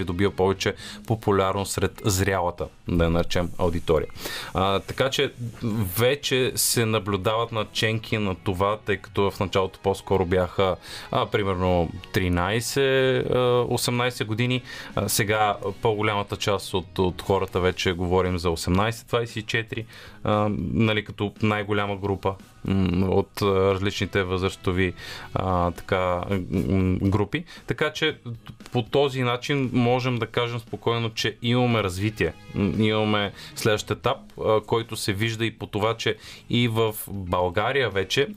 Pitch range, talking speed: 95-115 Hz, 120 wpm